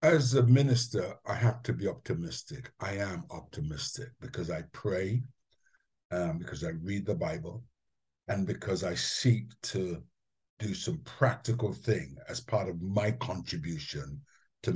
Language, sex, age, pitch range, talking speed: English, male, 60-79, 110-135 Hz, 140 wpm